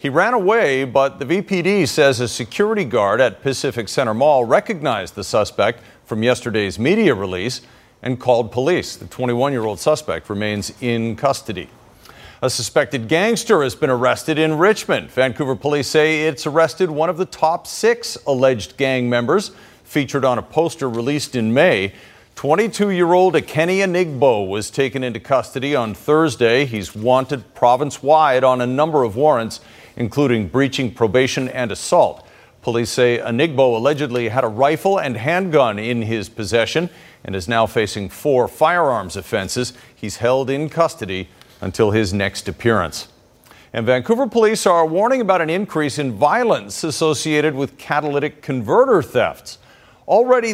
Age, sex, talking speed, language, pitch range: 50-69, male, 145 wpm, English, 115-160 Hz